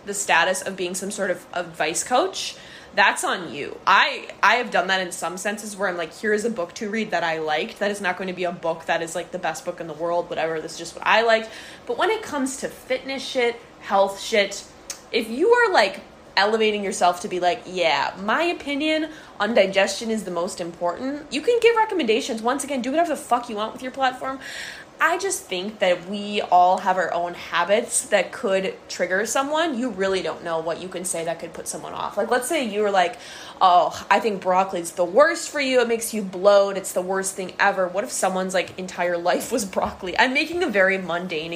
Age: 20-39